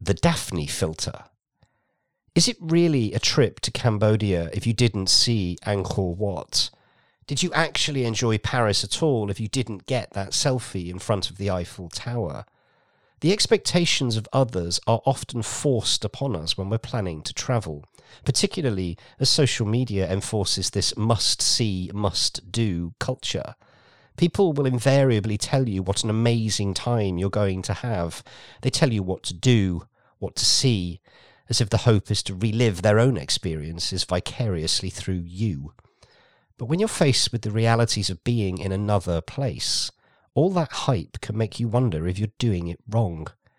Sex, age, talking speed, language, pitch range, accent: male, 40-59, 165 wpm, English, 95-130 Hz, British